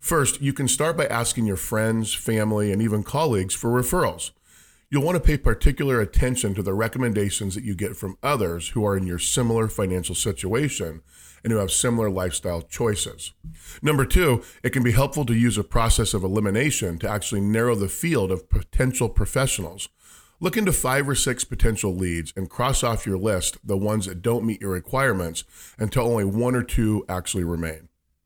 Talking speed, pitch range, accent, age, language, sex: 185 wpm, 95-120 Hz, American, 40-59, English, male